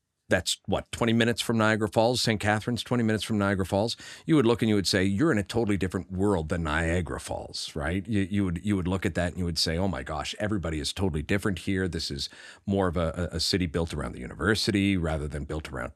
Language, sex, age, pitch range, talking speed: English, male, 40-59, 90-110 Hz, 250 wpm